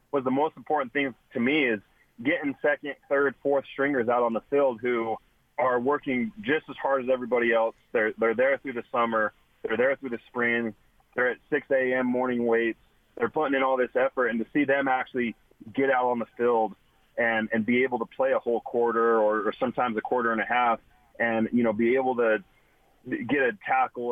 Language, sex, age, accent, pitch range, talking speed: English, male, 30-49, American, 110-135 Hz, 210 wpm